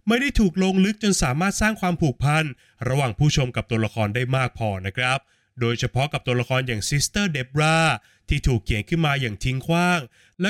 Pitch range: 120-165 Hz